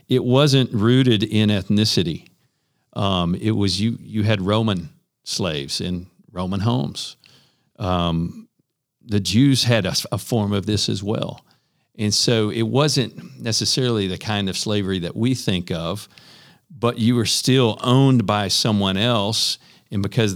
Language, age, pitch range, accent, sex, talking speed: English, 50-69, 95-120 Hz, American, male, 145 wpm